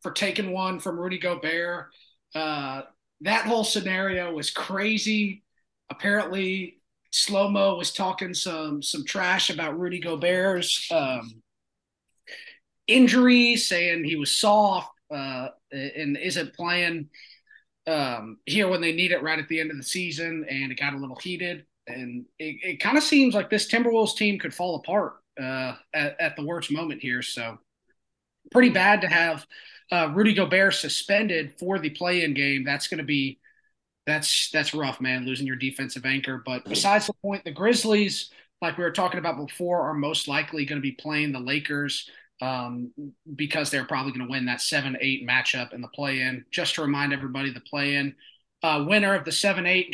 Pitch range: 140-190 Hz